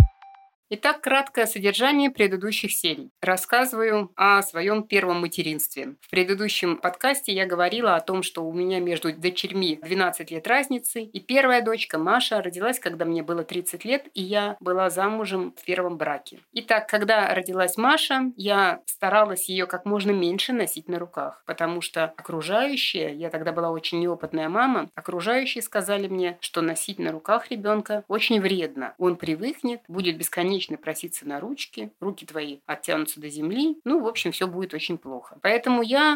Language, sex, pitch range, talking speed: Russian, female, 170-235 Hz, 160 wpm